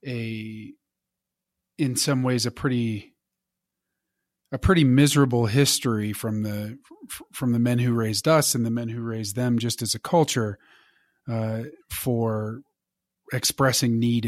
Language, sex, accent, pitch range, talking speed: English, male, American, 110-130 Hz, 135 wpm